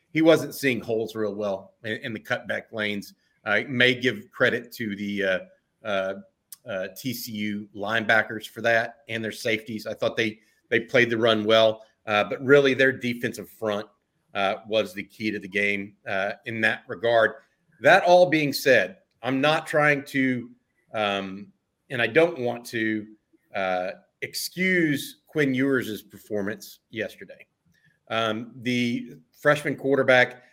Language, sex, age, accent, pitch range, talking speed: English, male, 40-59, American, 110-135 Hz, 150 wpm